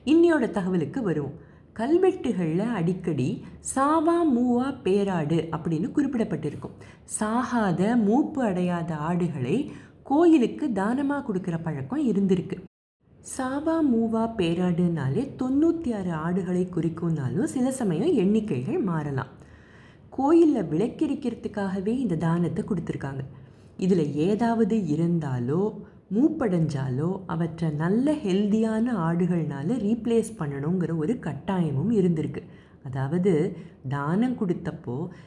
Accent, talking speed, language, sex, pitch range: native, 85 wpm, Tamil, female, 160-230 Hz